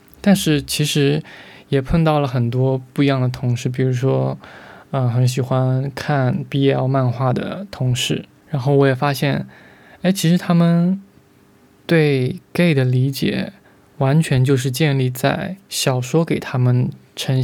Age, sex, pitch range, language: 20-39, male, 130-160 Hz, Chinese